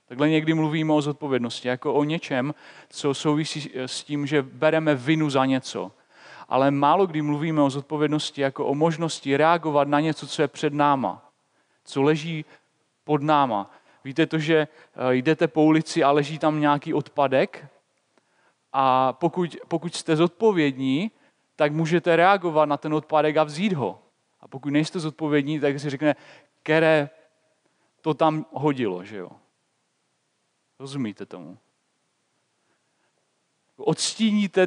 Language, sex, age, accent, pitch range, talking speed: Czech, male, 40-59, native, 140-165 Hz, 135 wpm